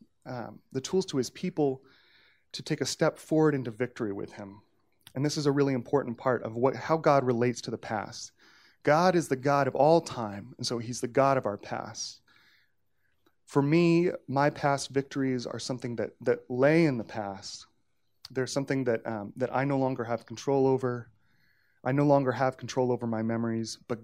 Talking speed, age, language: 195 wpm, 30-49, English